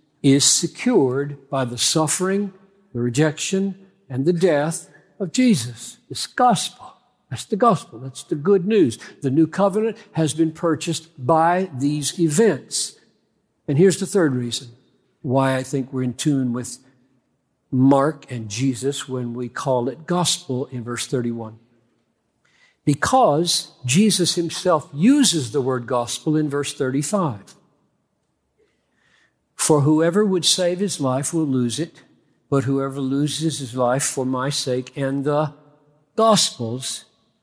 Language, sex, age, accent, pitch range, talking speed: English, male, 60-79, American, 130-175 Hz, 135 wpm